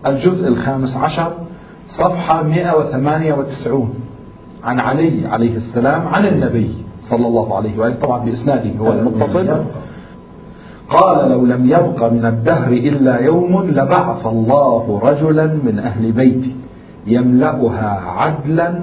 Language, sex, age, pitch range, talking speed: Arabic, male, 50-69, 115-170 Hz, 110 wpm